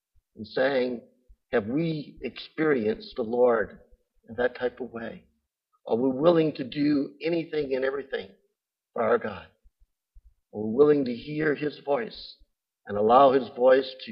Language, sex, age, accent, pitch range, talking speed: English, male, 60-79, American, 115-155 Hz, 150 wpm